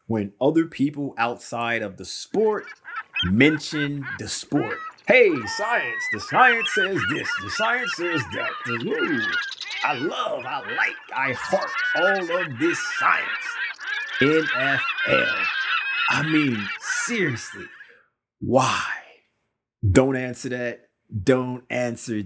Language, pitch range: English, 110-175 Hz